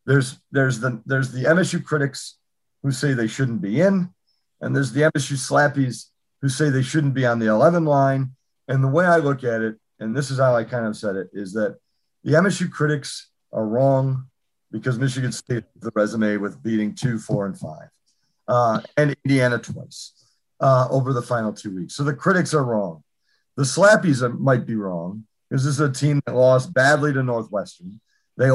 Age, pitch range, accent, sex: 50-69, 115-145 Hz, American, male